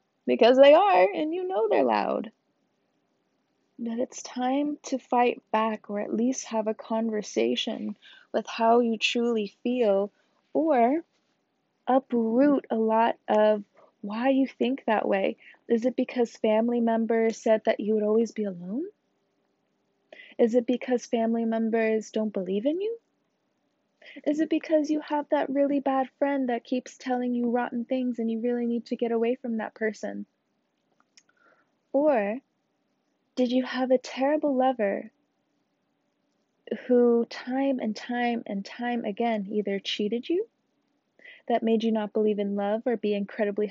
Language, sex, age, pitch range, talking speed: English, female, 20-39, 220-255 Hz, 150 wpm